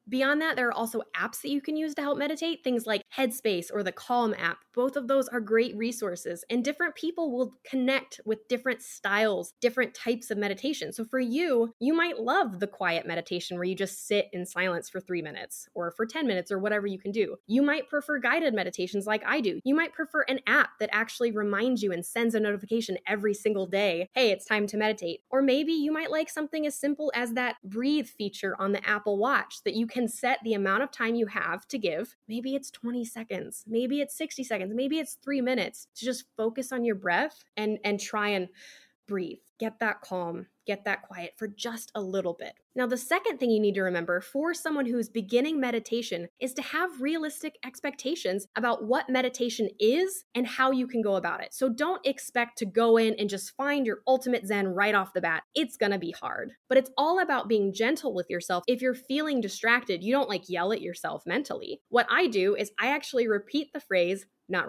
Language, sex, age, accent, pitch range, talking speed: English, female, 10-29, American, 205-275 Hz, 215 wpm